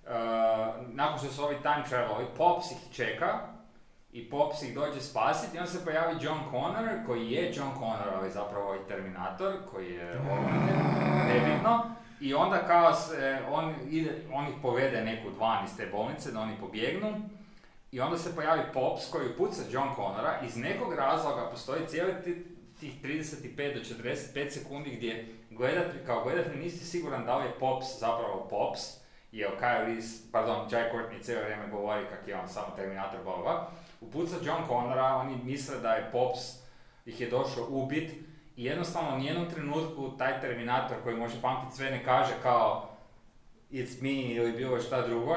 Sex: male